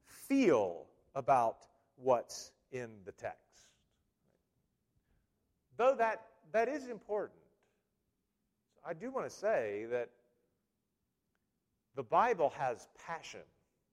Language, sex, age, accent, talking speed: English, male, 40-59, American, 90 wpm